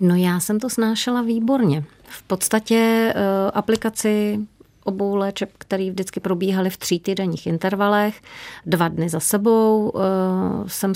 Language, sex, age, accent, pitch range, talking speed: Czech, female, 30-49, native, 175-195 Hz, 135 wpm